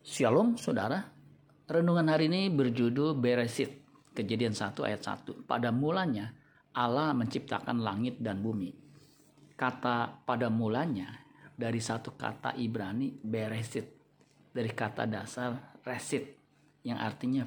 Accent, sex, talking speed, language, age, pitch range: native, male, 110 wpm, Indonesian, 40-59, 115-145 Hz